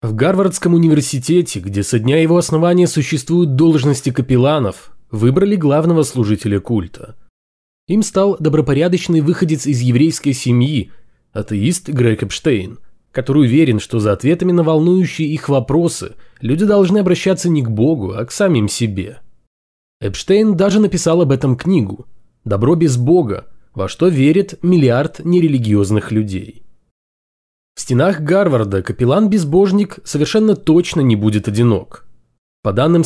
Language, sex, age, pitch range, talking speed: Russian, male, 20-39, 115-175 Hz, 125 wpm